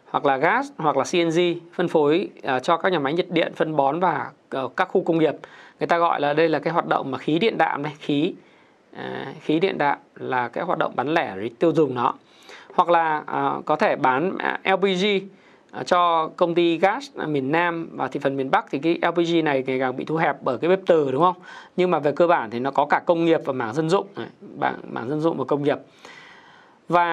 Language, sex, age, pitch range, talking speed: Vietnamese, male, 20-39, 150-185 Hz, 230 wpm